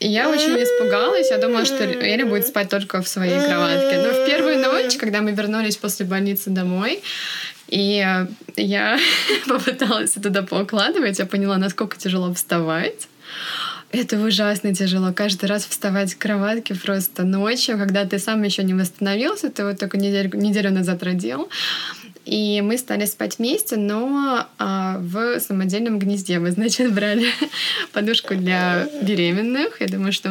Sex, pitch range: female, 185-230 Hz